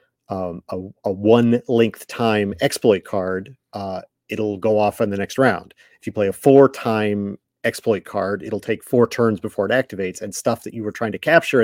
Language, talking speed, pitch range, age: English, 200 wpm, 100-120 Hz, 40-59